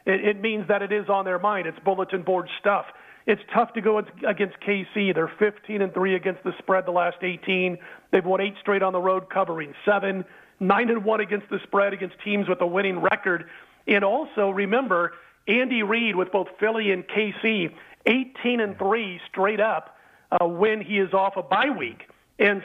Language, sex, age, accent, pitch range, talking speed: English, male, 40-59, American, 190-220 Hz, 190 wpm